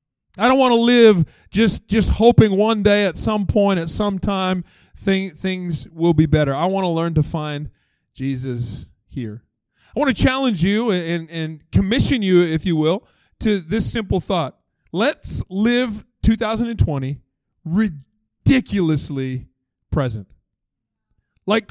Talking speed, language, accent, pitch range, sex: 140 wpm, English, American, 150-230 Hz, male